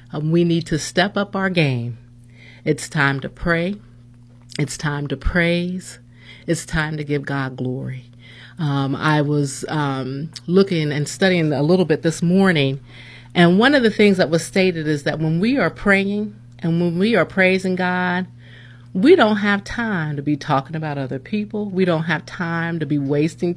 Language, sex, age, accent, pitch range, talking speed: English, female, 40-59, American, 125-170 Hz, 180 wpm